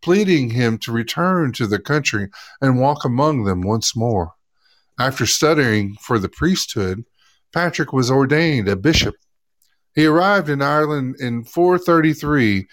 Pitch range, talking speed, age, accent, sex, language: 115-150 Hz, 135 wpm, 50-69, American, male, English